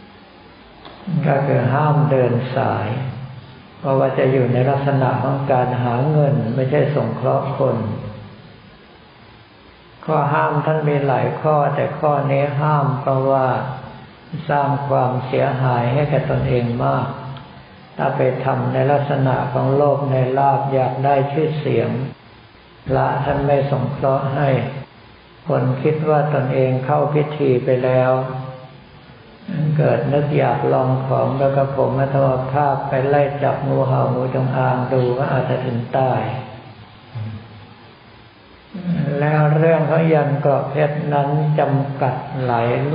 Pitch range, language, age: 125-145 Hz, Thai, 60-79